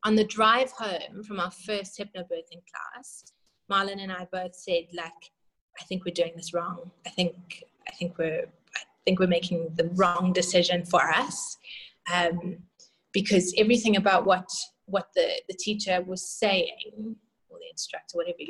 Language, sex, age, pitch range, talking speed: English, female, 20-39, 180-210 Hz, 160 wpm